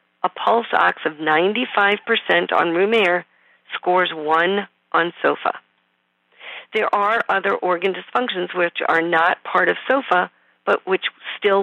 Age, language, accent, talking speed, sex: 40-59, English, American, 135 wpm, female